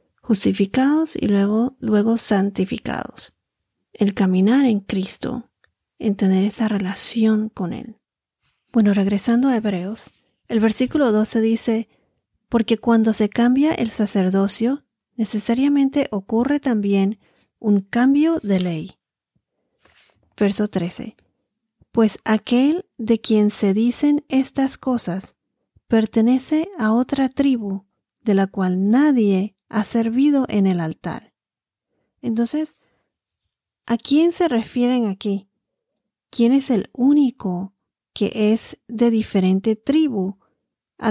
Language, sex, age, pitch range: Spanish, female, 40-59, 200-245 Hz